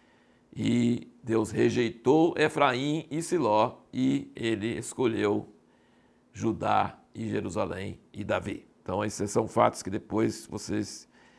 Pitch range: 110-145 Hz